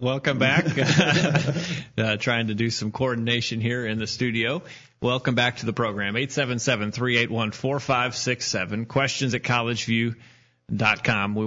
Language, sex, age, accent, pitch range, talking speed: English, male, 30-49, American, 115-135 Hz, 115 wpm